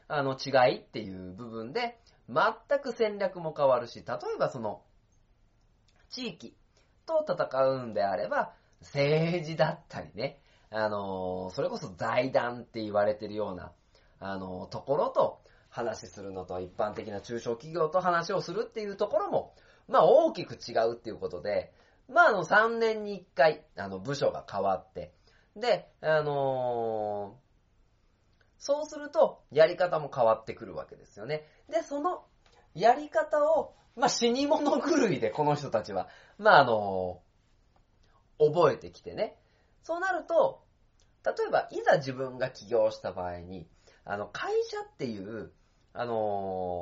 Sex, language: male, Japanese